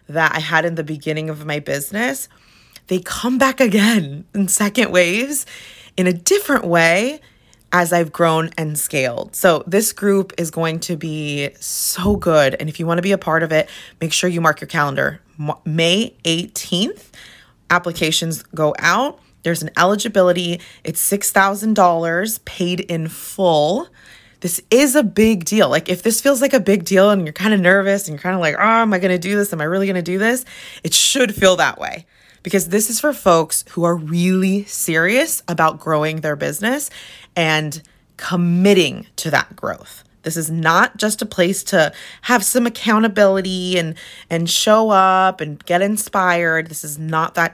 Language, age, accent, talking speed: English, 20-39, American, 185 wpm